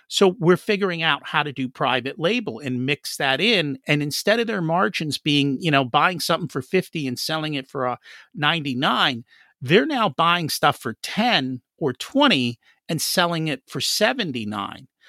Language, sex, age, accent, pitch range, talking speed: English, male, 50-69, American, 135-195 Hz, 175 wpm